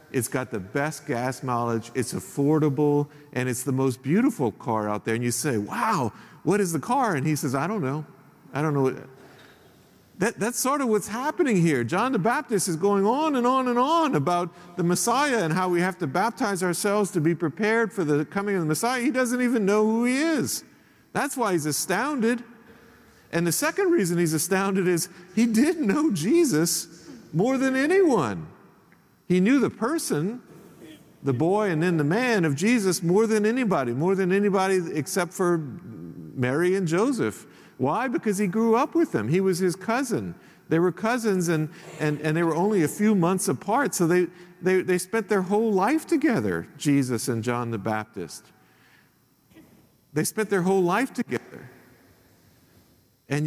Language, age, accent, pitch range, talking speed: English, 50-69, American, 155-225 Hz, 180 wpm